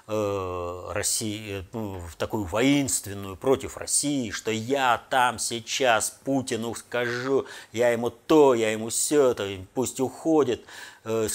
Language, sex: Russian, male